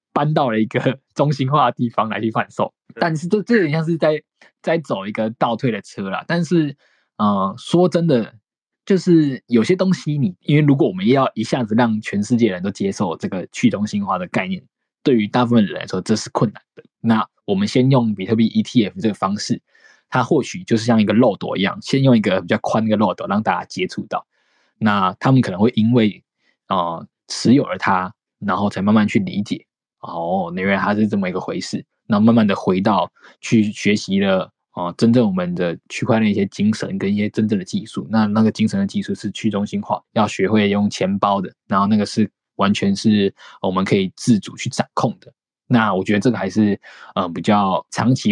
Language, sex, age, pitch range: Chinese, male, 20-39, 105-145 Hz